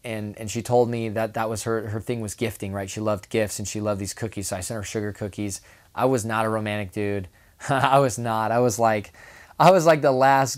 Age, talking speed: 20-39, 255 wpm